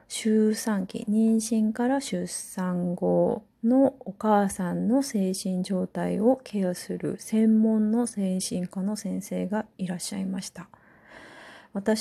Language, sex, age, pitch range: Japanese, female, 30-49, 175-220 Hz